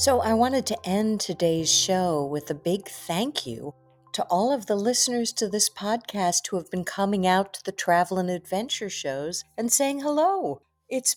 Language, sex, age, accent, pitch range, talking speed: English, female, 50-69, American, 165-230 Hz, 190 wpm